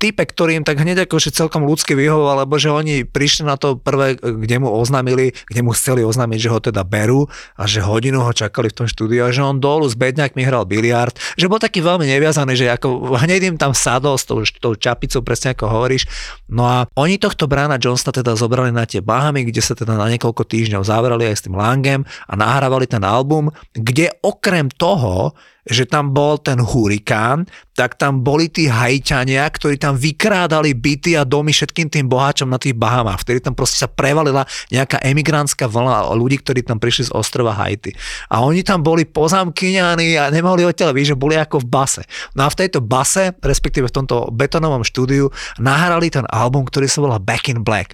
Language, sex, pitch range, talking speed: Slovak, male, 120-150 Hz, 200 wpm